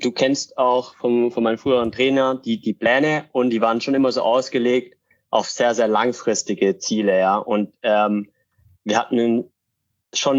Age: 30-49